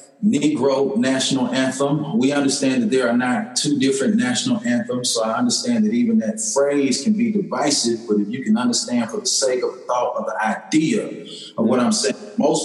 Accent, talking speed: American, 195 wpm